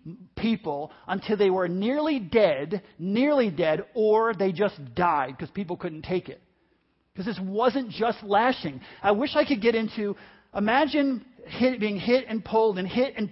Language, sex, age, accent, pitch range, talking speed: English, male, 40-59, American, 200-255 Hz, 165 wpm